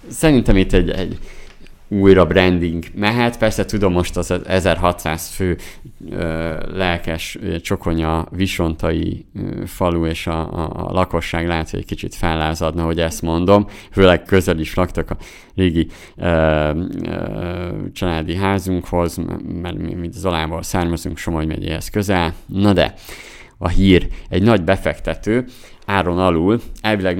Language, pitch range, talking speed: Hungarian, 80-95 Hz, 135 wpm